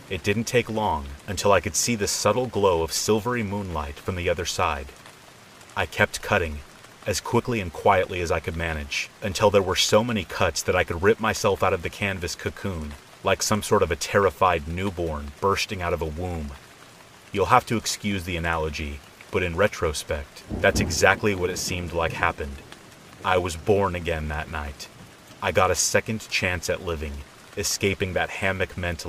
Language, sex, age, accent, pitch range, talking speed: English, male, 30-49, American, 80-100 Hz, 185 wpm